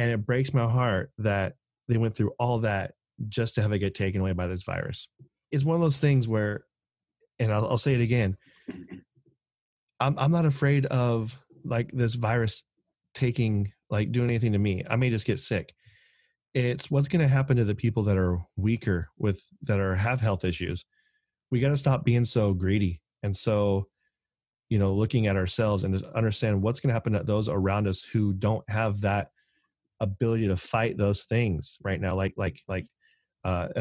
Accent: American